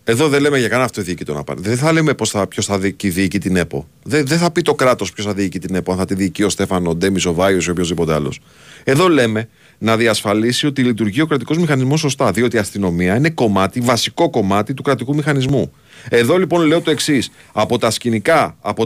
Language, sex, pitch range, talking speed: Greek, male, 110-155 Hz, 230 wpm